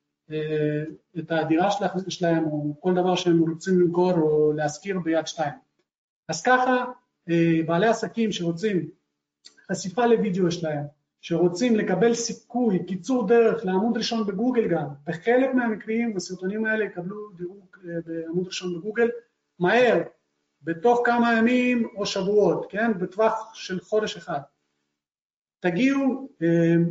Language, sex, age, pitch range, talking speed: Hebrew, male, 40-59, 165-210 Hz, 115 wpm